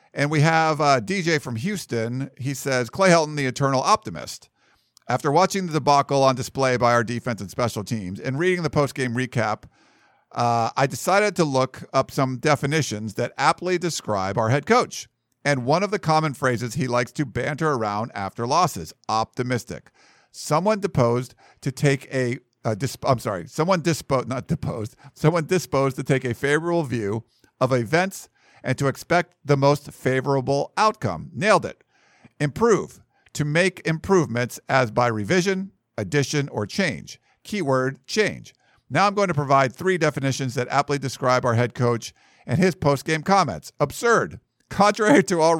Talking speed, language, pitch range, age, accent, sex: 165 wpm, English, 125-160 Hz, 50-69, American, male